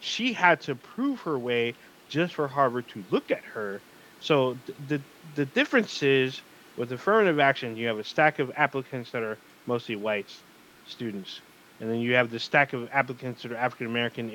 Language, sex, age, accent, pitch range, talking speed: English, male, 20-39, American, 115-140 Hz, 185 wpm